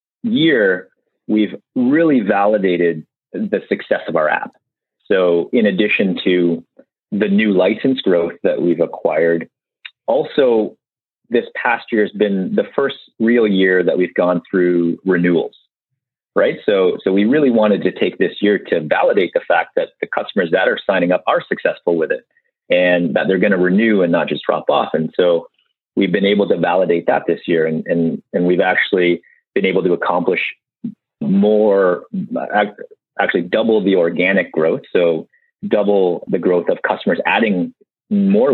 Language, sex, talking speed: English, male, 160 wpm